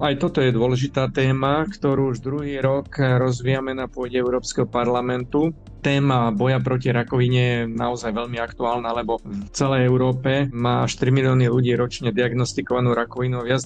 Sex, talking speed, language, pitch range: male, 150 wpm, Slovak, 120-135 Hz